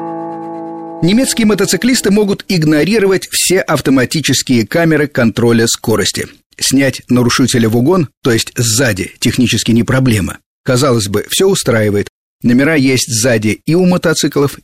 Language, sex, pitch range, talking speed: Russian, male, 110-145 Hz, 120 wpm